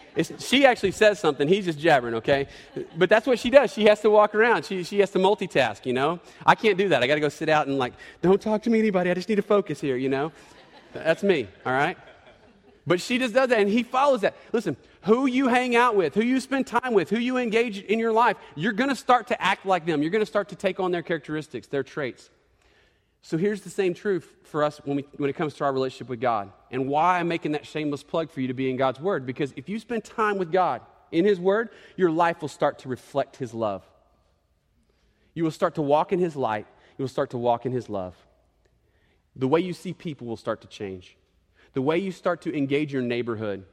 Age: 30-49